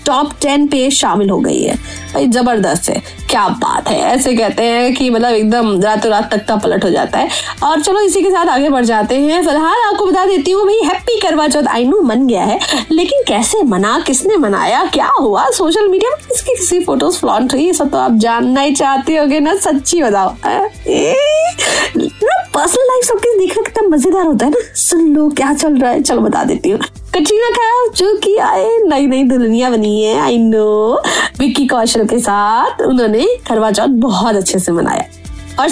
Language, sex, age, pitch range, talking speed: Hindi, female, 20-39, 245-365 Hz, 185 wpm